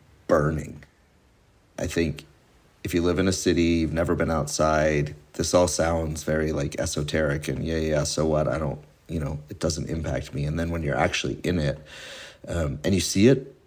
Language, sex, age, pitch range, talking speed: English, male, 40-59, 75-90 Hz, 195 wpm